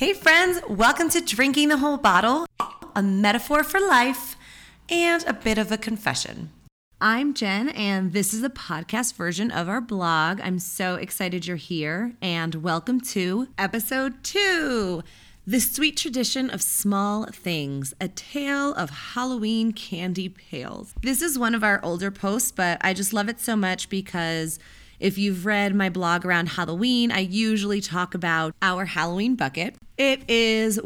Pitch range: 180-245 Hz